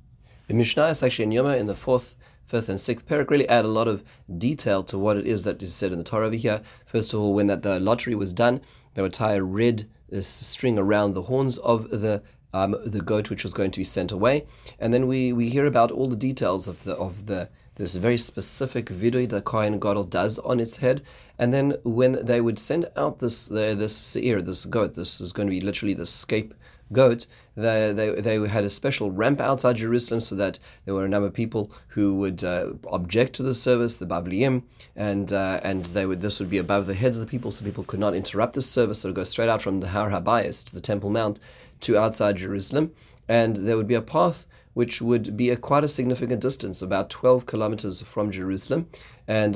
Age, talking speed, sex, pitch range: 30-49, 230 wpm, male, 100-120 Hz